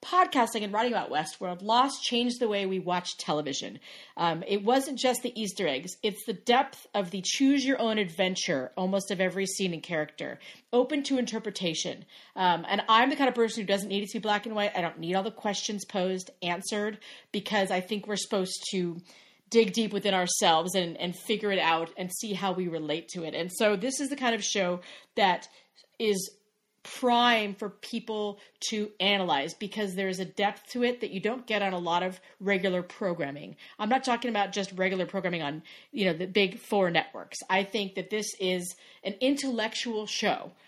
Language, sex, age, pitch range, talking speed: English, female, 30-49, 185-235 Hz, 200 wpm